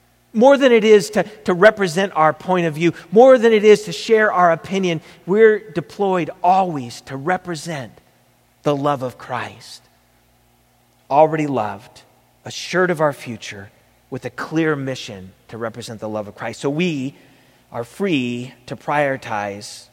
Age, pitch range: 40-59, 115-160 Hz